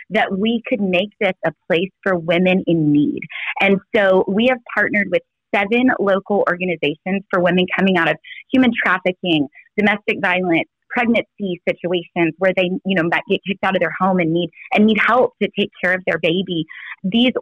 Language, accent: English, American